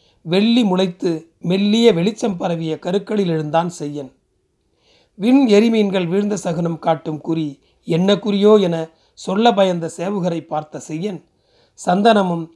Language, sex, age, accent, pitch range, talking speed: Tamil, male, 30-49, native, 165-215 Hz, 110 wpm